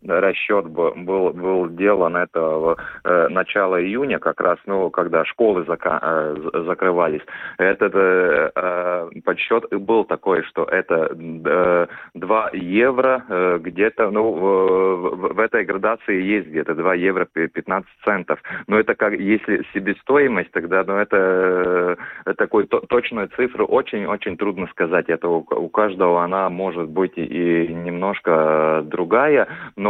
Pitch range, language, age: 85-95 Hz, Russian, 30-49